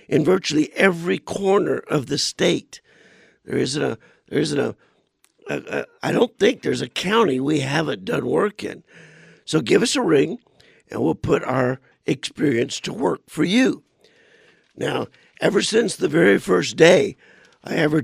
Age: 60-79